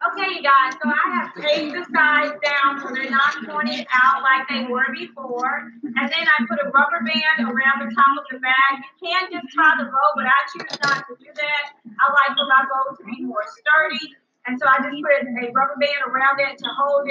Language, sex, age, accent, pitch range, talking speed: English, female, 40-59, American, 245-285 Hz, 230 wpm